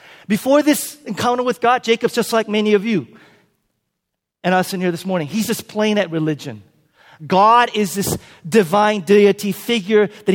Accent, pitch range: American, 150-230 Hz